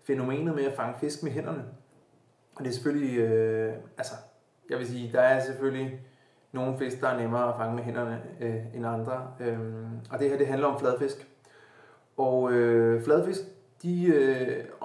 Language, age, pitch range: Danish, 30-49, 130-160 Hz